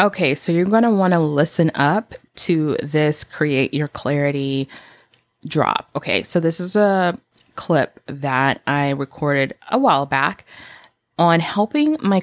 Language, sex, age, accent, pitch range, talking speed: English, female, 20-39, American, 145-185 Hz, 145 wpm